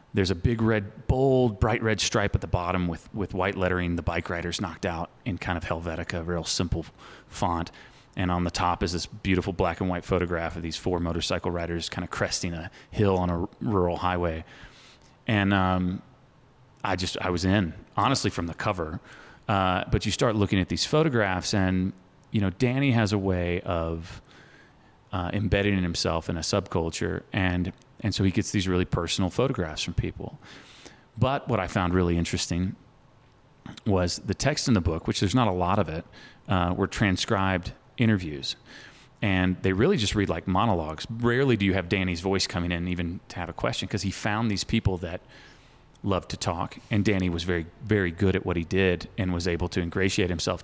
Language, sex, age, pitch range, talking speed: English, male, 30-49, 90-105 Hz, 195 wpm